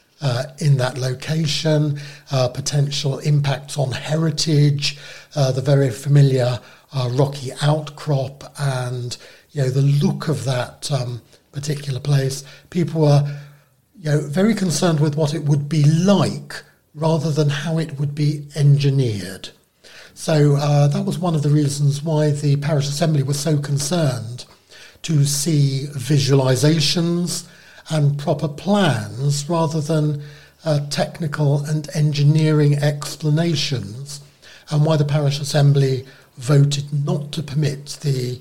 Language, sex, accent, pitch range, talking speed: English, male, British, 135-150 Hz, 130 wpm